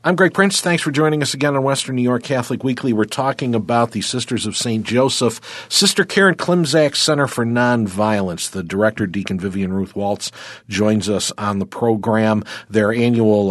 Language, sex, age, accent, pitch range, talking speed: English, male, 50-69, American, 100-125 Hz, 180 wpm